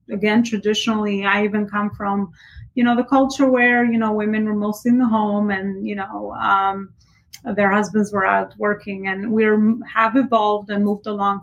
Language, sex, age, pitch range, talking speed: English, female, 30-49, 200-230 Hz, 185 wpm